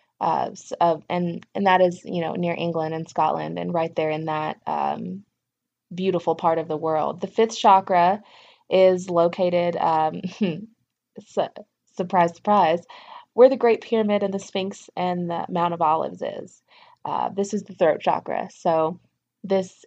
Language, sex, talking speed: English, female, 165 wpm